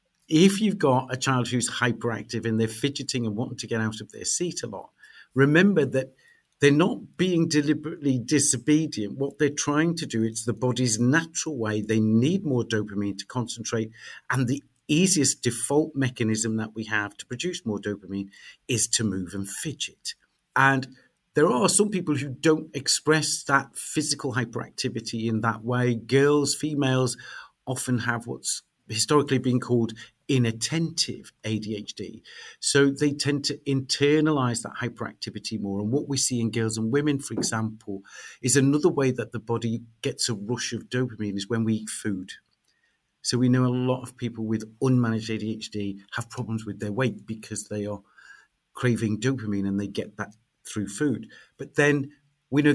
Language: English